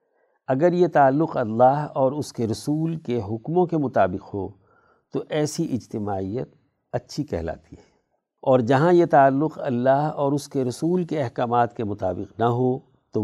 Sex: male